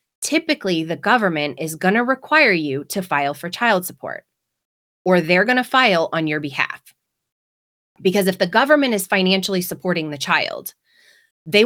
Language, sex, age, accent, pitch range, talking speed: English, female, 30-49, American, 150-205 Hz, 160 wpm